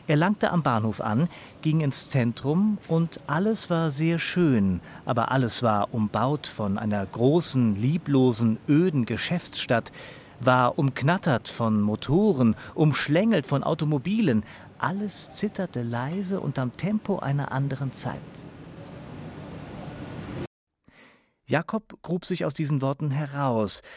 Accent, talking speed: German, 115 wpm